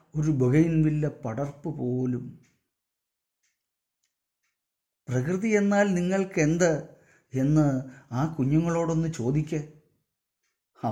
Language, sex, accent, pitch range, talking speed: English, male, Indian, 125-160 Hz, 75 wpm